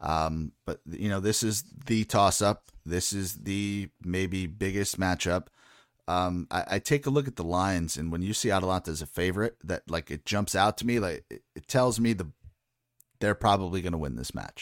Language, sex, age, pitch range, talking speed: English, male, 30-49, 90-115 Hz, 210 wpm